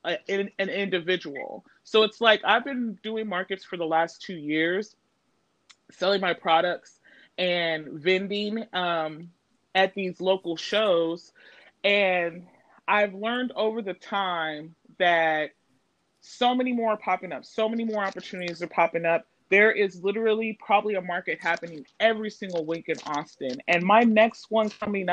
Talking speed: 150 wpm